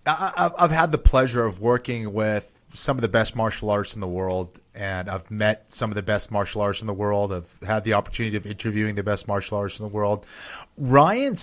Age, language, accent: 30-49, English, American